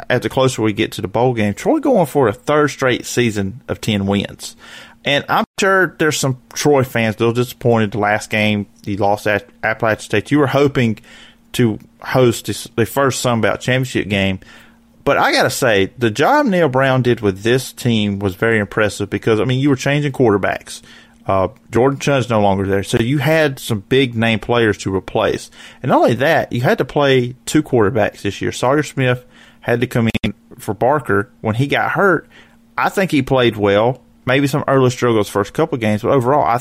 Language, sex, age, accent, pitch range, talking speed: English, male, 40-59, American, 110-135 Hz, 205 wpm